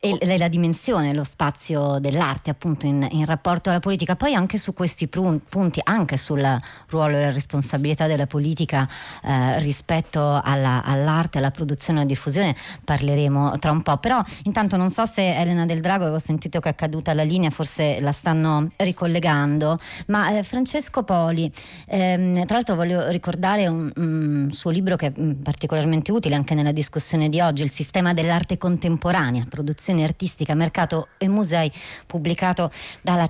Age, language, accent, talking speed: 30-49, Italian, native, 165 wpm